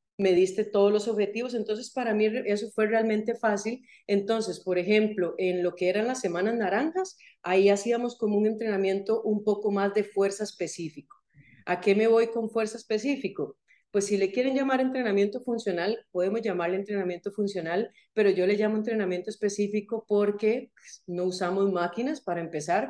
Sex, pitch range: female, 185-225 Hz